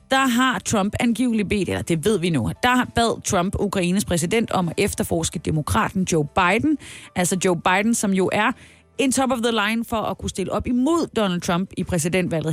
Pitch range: 180-245 Hz